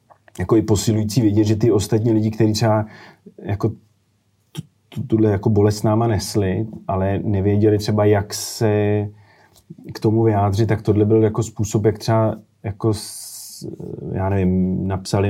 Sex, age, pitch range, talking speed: male, 30-49, 95-110 Hz, 135 wpm